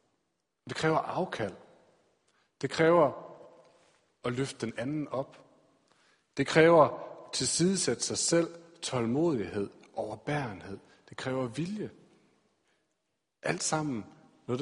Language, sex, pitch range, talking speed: Danish, male, 120-165 Hz, 105 wpm